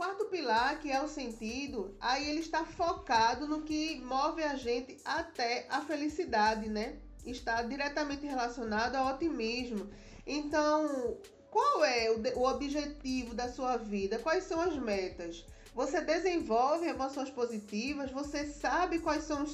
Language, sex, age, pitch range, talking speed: Portuguese, female, 20-39, 235-305 Hz, 140 wpm